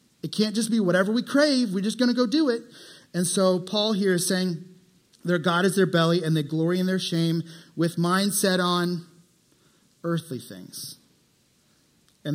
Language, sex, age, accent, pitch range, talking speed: English, male, 30-49, American, 165-215 Hz, 180 wpm